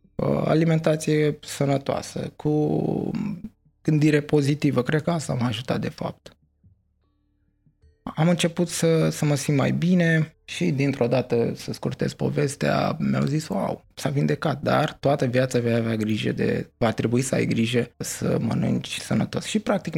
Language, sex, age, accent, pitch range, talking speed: Romanian, male, 20-39, native, 115-155 Hz, 145 wpm